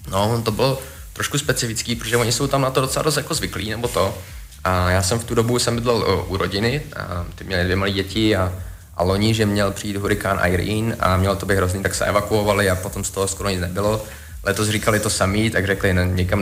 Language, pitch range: Czech, 90-105 Hz